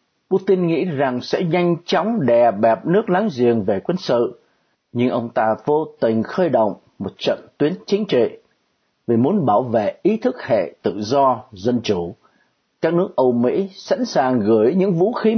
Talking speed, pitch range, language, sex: 185 wpm, 115-190 Hz, Vietnamese, male